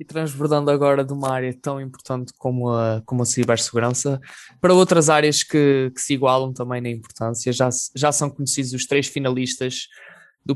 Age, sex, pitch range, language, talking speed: 20-39, male, 125-150 Hz, Portuguese, 170 wpm